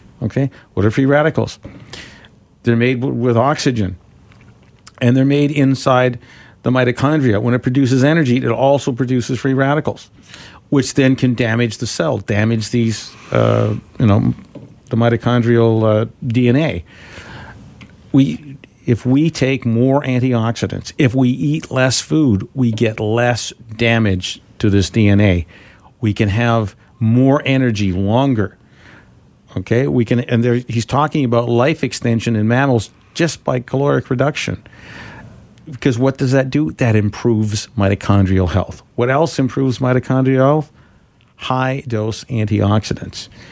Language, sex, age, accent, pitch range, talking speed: English, male, 50-69, American, 110-135 Hz, 130 wpm